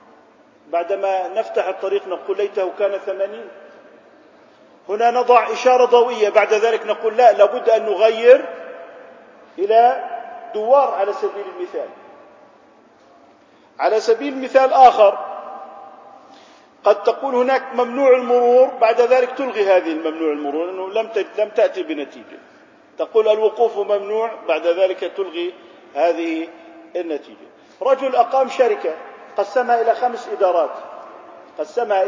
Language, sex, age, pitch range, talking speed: Arabic, male, 50-69, 195-260 Hz, 110 wpm